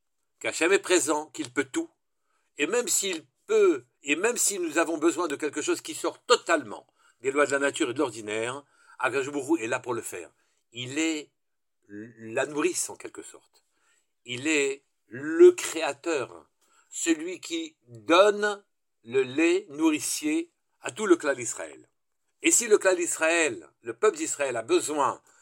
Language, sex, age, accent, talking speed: French, male, 60-79, French, 160 wpm